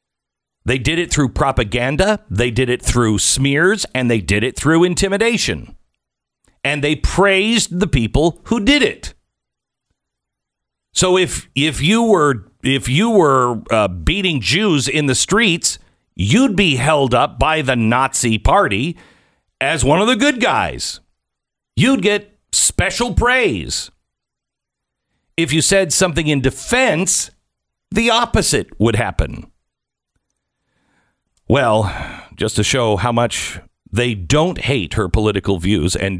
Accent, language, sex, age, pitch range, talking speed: American, English, male, 50-69, 110-165 Hz, 130 wpm